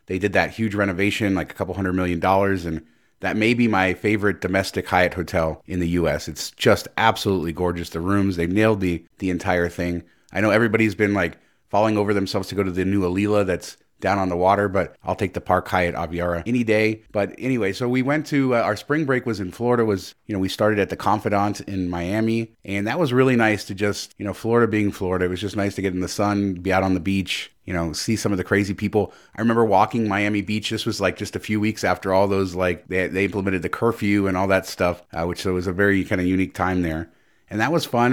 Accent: American